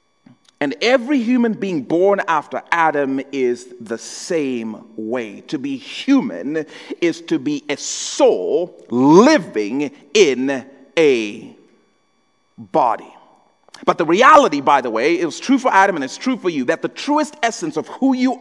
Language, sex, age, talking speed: English, male, 40-59, 145 wpm